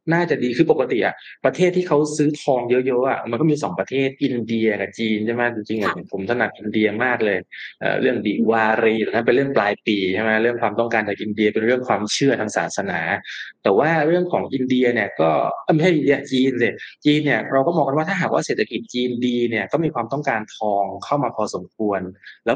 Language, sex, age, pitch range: Thai, male, 20-39, 115-160 Hz